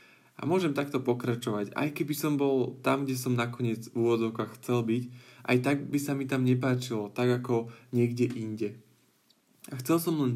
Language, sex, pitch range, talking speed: Slovak, male, 120-140 Hz, 180 wpm